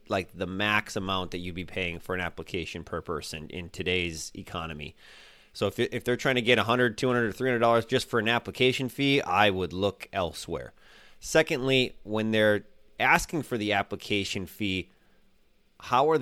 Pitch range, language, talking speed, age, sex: 100-125 Hz, English, 165 wpm, 30-49, male